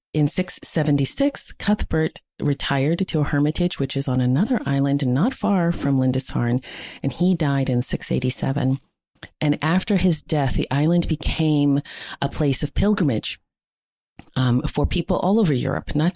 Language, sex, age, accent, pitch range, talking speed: English, female, 40-59, American, 125-155 Hz, 145 wpm